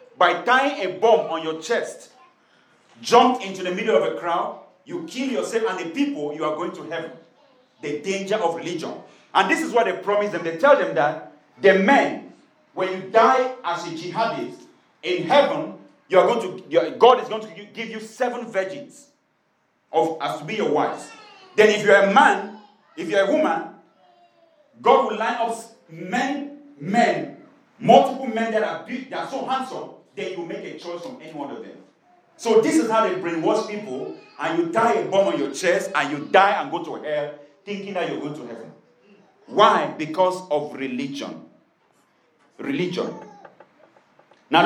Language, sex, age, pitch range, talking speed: English, male, 40-59, 185-270 Hz, 180 wpm